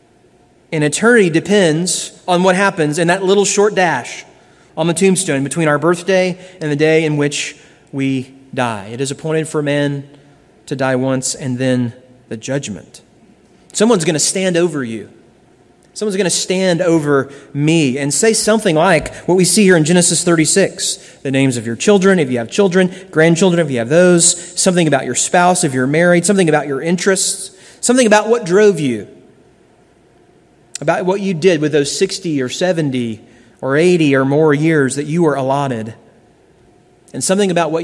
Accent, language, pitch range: American, English, 135-180 Hz